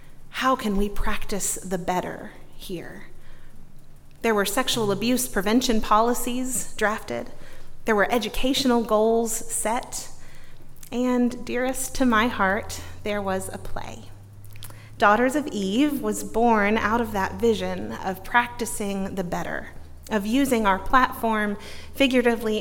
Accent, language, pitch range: American, English, 195-245 Hz